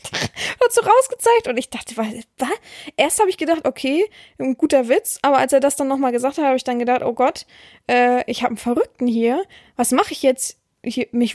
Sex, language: female, German